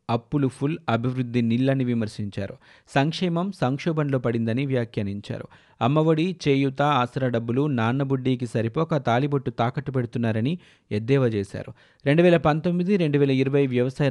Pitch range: 115-140 Hz